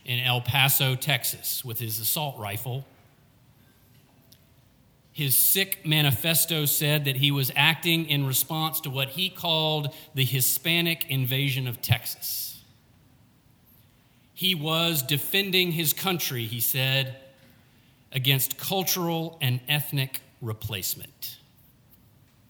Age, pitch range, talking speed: 40-59, 120-140 Hz, 105 wpm